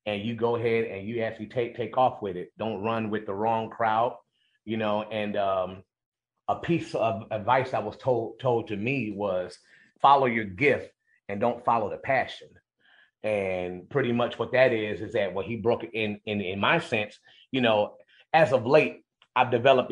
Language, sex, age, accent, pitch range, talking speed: English, male, 30-49, American, 105-130 Hz, 195 wpm